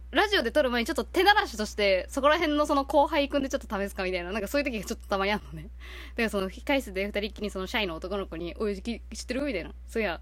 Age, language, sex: 20-39, Japanese, female